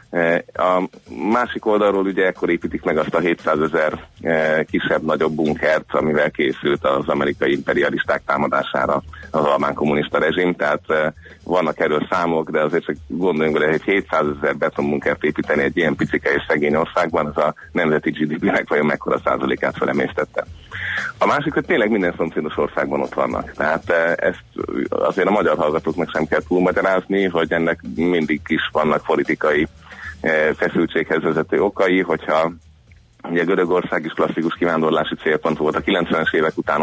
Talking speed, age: 150 wpm, 30-49